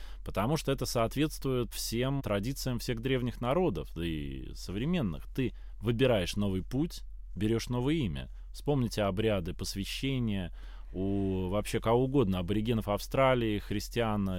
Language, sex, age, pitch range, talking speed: Russian, male, 20-39, 95-135 Hz, 115 wpm